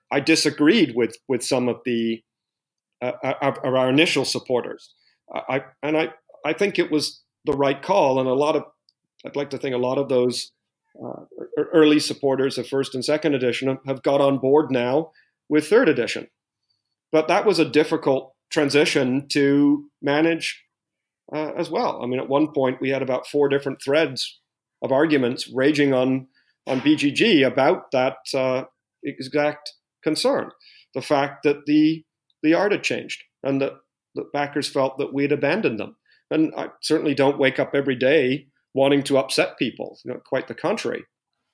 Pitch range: 135-155 Hz